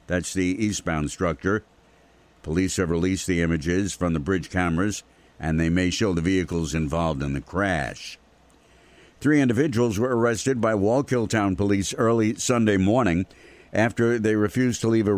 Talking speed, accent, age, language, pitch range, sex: 160 wpm, American, 60-79, English, 90-110 Hz, male